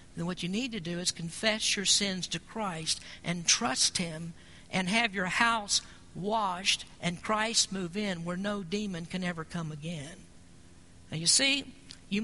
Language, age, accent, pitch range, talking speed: English, 50-69, American, 160-210 Hz, 170 wpm